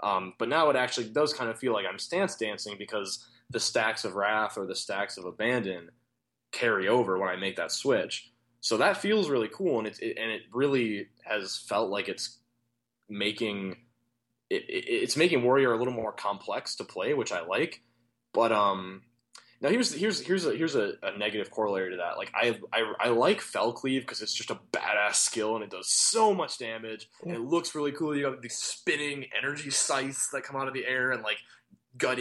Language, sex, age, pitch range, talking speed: English, male, 20-39, 110-135 Hz, 210 wpm